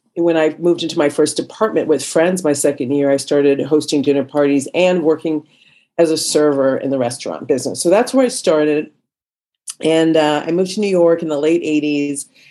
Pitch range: 140-160 Hz